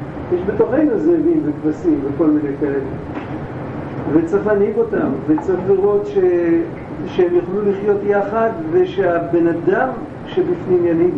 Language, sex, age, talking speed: Hebrew, male, 50-69, 115 wpm